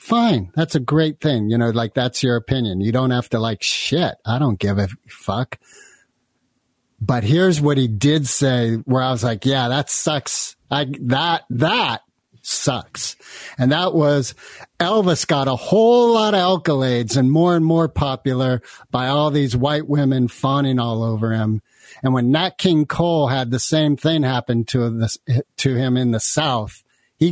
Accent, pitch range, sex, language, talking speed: American, 120-155 Hz, male, English, 180 wpm